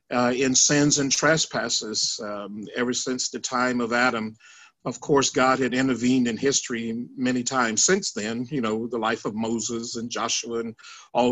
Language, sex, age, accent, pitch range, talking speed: English, male, 50-69, American, 120-155 Hz, 175 wpm